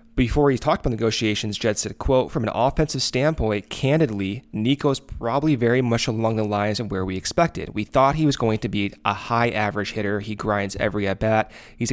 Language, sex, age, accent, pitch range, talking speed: English, male, 30-49, American, 105-130 Hz, 205 wpm